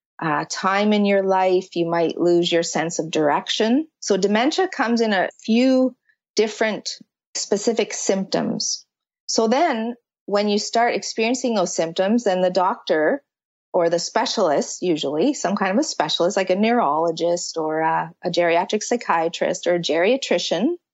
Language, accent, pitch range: English, American, 170-215 Hz